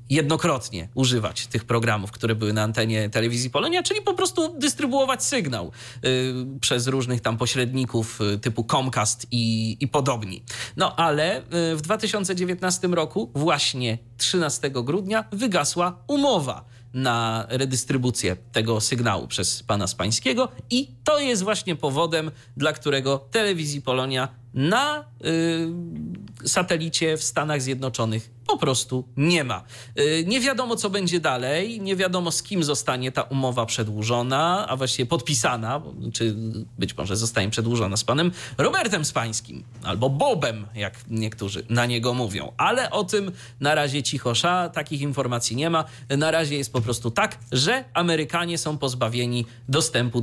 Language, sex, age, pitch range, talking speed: Polish, male, 40-59, 120-160 Hz, 140 wpm